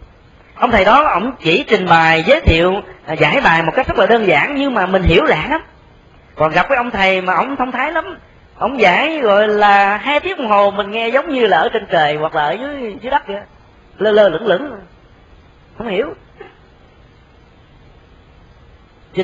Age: 30-49